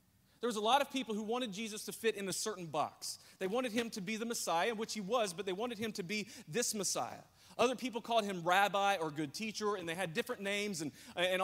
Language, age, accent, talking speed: English, 30-49, American, 250 wpm